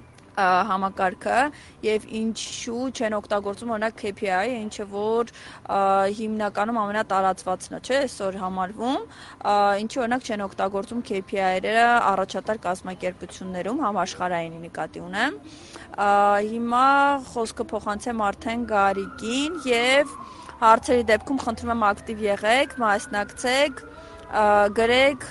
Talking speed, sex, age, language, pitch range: 70 wpm, female, 20-39, Russian, 200-235 Hz